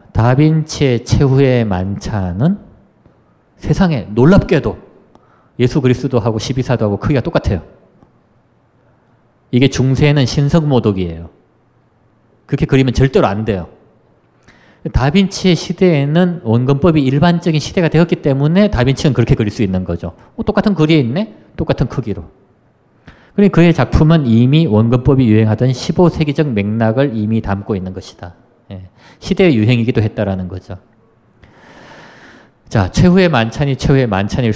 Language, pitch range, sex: Korean, 105-150 Hz, male